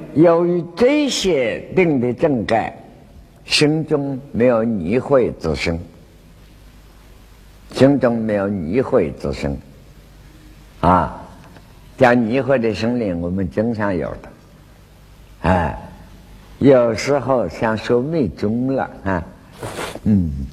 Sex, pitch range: male, 85-140 Hz